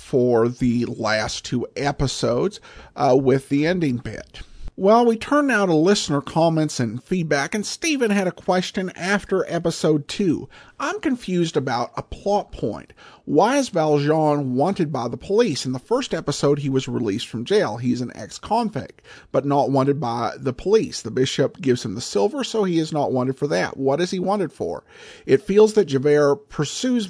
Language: English